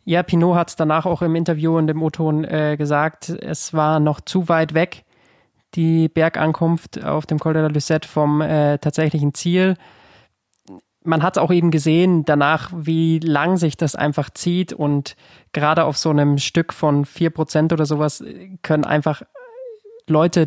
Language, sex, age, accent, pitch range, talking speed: German, male, 20-39, German, 150-165 Hz, 170 wpm